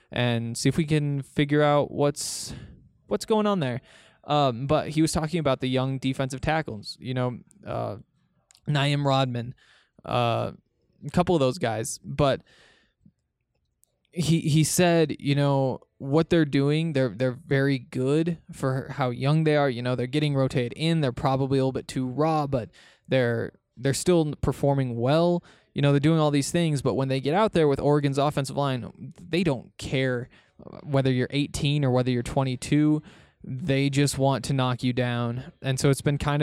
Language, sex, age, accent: English, male, 20-39, American